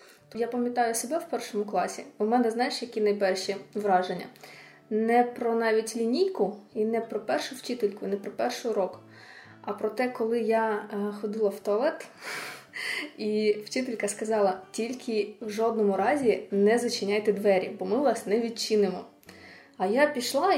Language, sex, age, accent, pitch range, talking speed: Ukrainian, female, 20-39, native, 210-255 Hz, 150 wpm